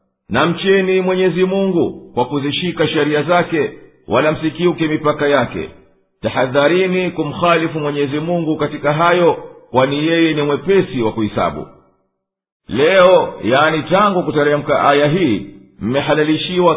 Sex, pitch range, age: male, 145-175 Hz, 50-69